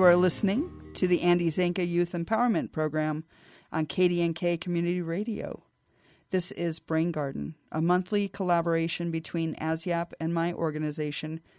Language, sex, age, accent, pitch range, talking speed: English, female, 40-59, American, 160-190 Hz, 135 wpm